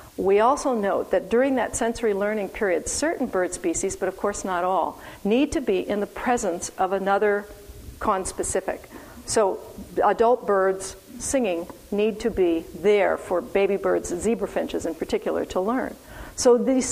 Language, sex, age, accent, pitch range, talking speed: English, female, 50-69, American, 190-235 Hz, 160 wpm